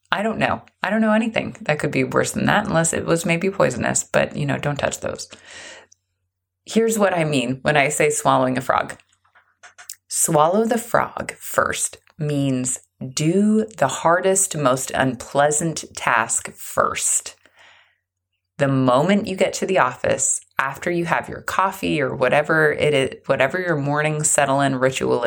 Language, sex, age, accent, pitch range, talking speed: English, female, 20-39, American, 130-180 Hz, 160 wpm